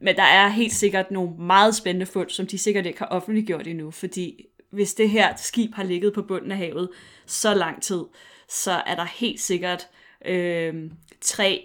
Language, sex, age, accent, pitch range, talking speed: Danish, female, 20-39, native, 180-220 Hz, 190 wpm